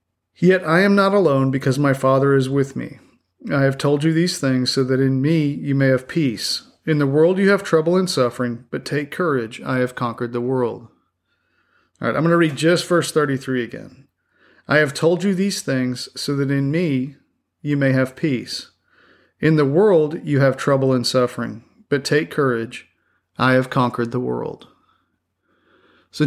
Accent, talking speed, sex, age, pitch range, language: American, 185 wpm, male, 40-59, 130-155 Hz, English